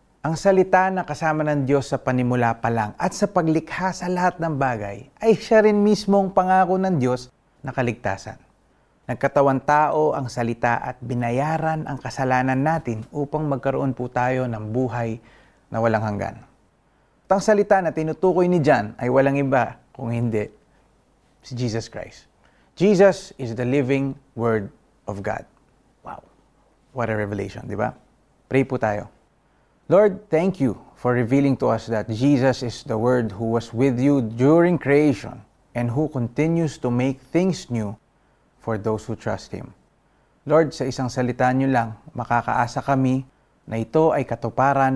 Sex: male